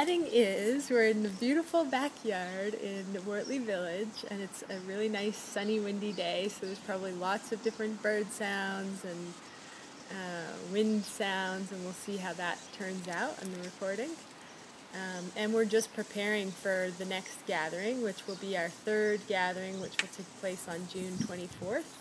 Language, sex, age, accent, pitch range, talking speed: English, female, 20-39, American, 190-220 Hz, 170 wpm